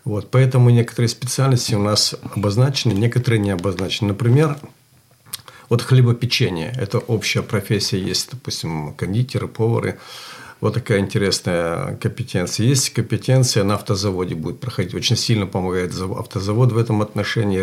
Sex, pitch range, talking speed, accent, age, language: male, 100-125 Hz, 130 wpm, native, 50-69, Russian